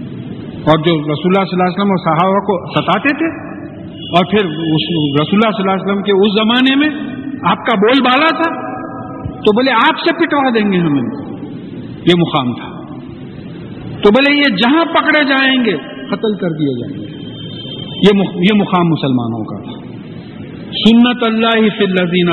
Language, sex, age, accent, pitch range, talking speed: English, male, 50-69, Indian, 175-265 Hz, 150 wpm